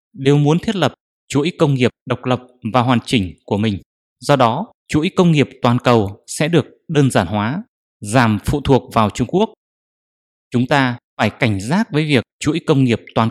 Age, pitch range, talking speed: 20-39, 115-145 Hz, 195 wpm